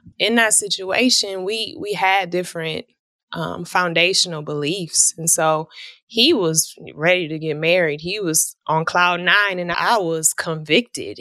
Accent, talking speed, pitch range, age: American, 145 wpm, 165-205 Hz, 20-39